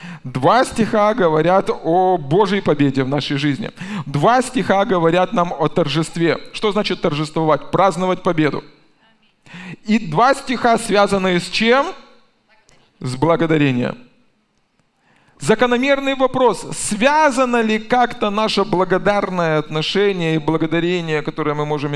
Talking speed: 110 wpm